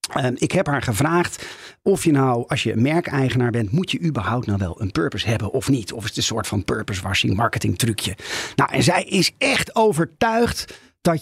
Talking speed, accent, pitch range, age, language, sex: 210 wpm, Dutch, 120-175 Hz, 40-59, Dutch, male